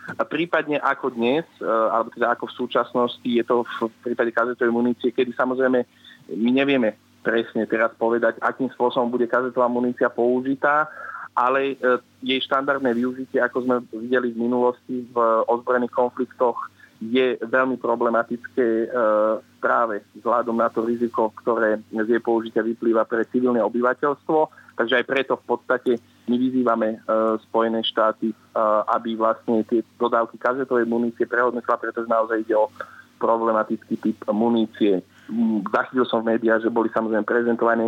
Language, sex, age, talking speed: Slovak, male, 30-49, 145 wpm